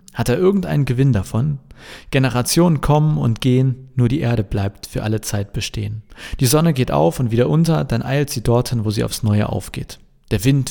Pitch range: 105-135 Hz